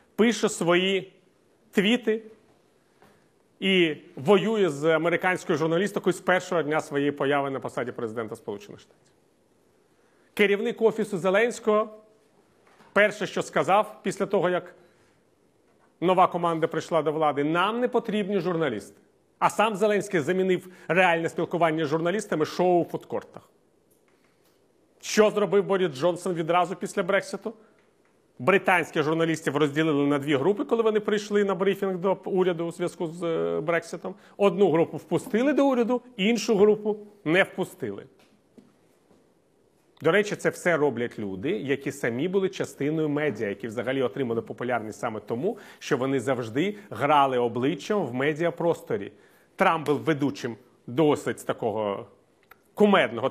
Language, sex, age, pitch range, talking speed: Ukrainian, male, 40-59, 155-205 Hz, 125 wpm